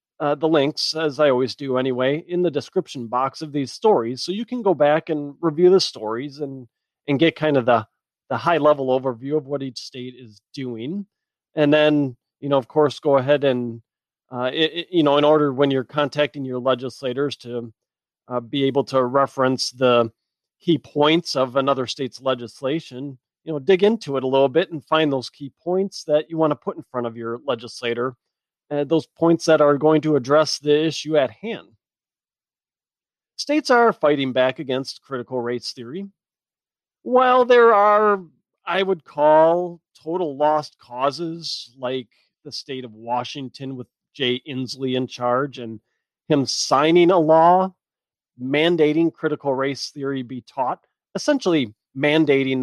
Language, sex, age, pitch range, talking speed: English, male, 40-59, 130-160 Hz, 170 wpm